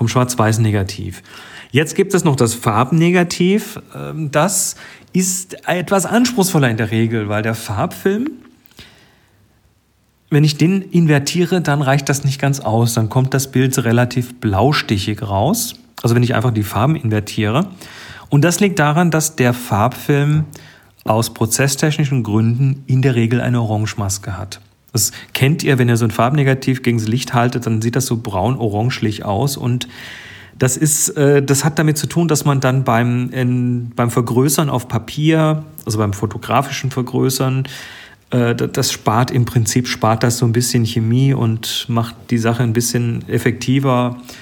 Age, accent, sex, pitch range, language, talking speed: 40-59, German, male, 115-145 Hz, German, 155 wpm